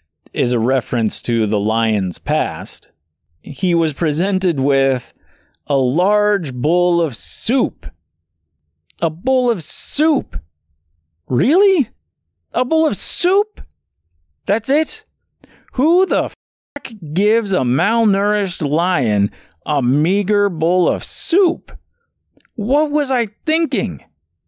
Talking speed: 105 wpm